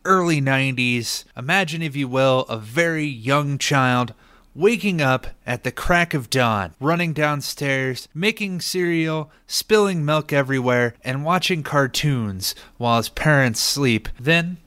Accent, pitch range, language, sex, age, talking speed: American, 115-160 Hz, English, male, 30-49, 130 wpm